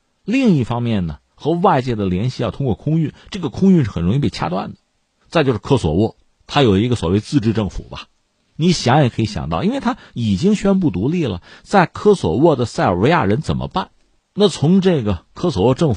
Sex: male